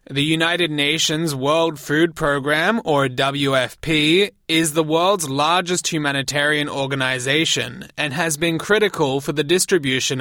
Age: 20-39